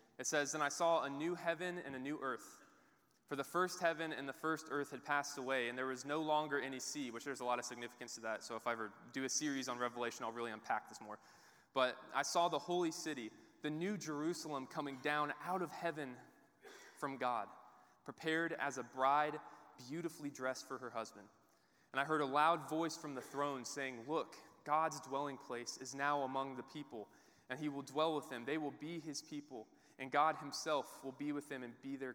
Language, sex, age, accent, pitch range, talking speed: English, male, 20-39, American, 130-160 Hz, 220 wpm